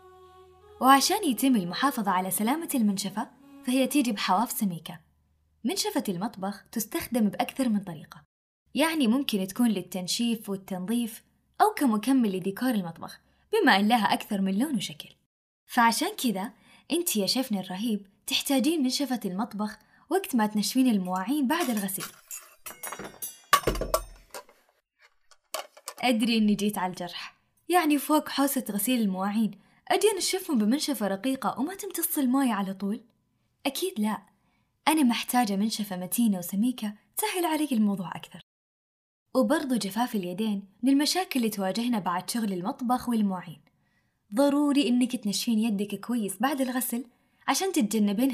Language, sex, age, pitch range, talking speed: Arabic, female, 10-29, 200-270 Hz, 120 wpm